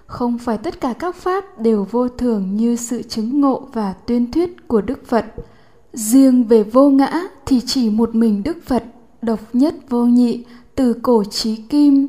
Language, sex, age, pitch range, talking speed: Vietnamese, female, 10-29, 220-265 Hz, 185 wpm